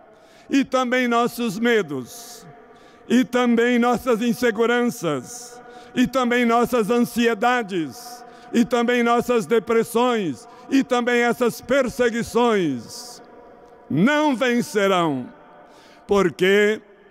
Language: Portuguese